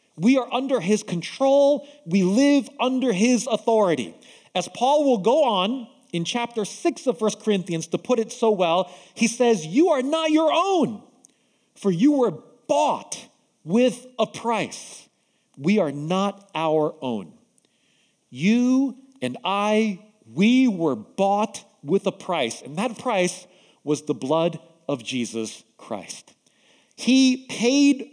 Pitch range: 185-265 Hz